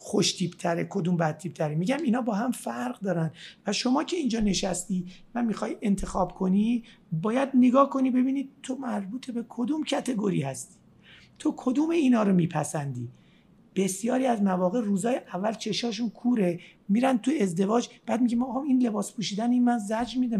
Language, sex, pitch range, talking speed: Persian, male, 185-240 Hz, 170 wpm